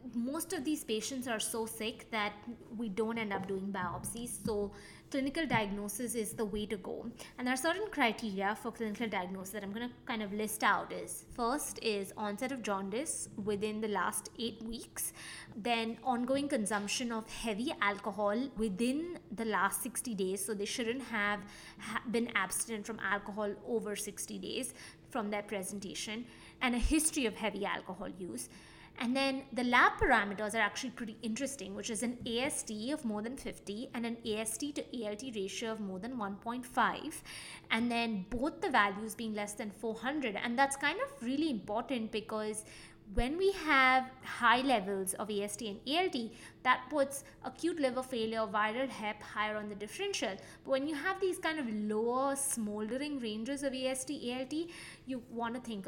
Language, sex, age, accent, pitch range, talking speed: English, female, 20-39, Indian, 215-260 Hz, 175 wpm